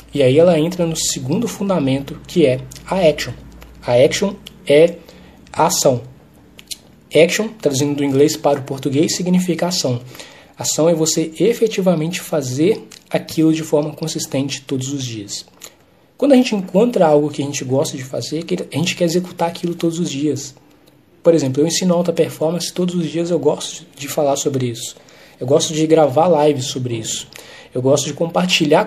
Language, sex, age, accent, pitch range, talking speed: English, male, 20-39, Brazilian, 140-170 Hz, 170 wpm